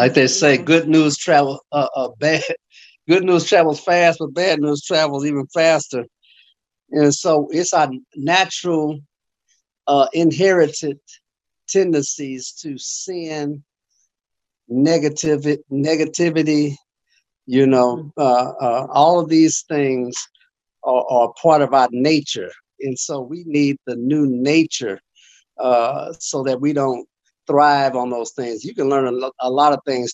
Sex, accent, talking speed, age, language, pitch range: male, American, 135 wpm, 50-69, English, 130-160 Hz